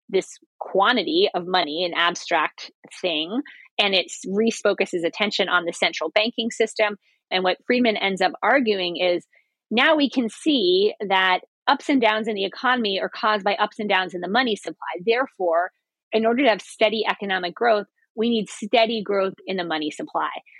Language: English